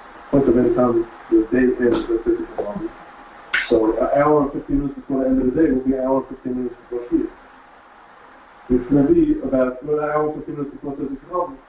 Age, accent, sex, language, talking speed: 50-69, American, male, English, 230 wpm